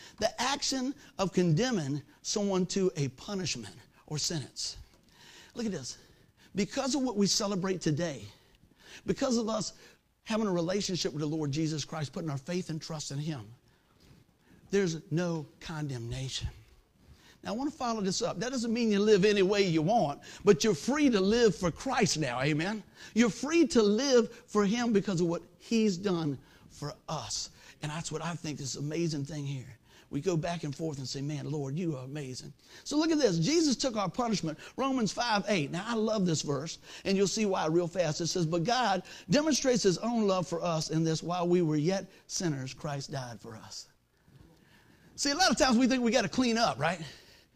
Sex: male